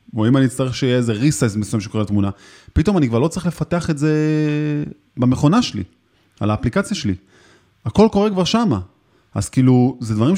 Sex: male